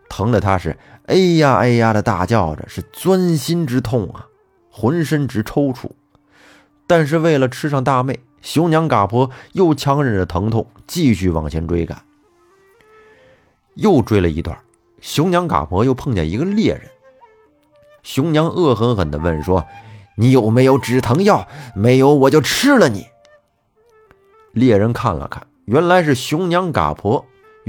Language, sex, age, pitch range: Chinese, male, 30-49, 100-155 Hz